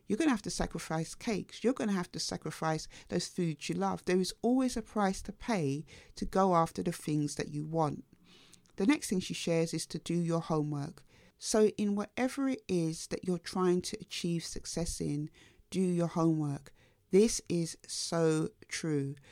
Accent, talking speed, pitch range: British, 190 wpm, 160-190 Hz